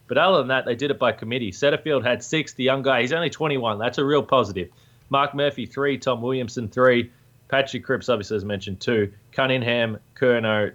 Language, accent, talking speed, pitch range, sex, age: English, Australian, 200 wpm, 115-135 Hz, male, 20-39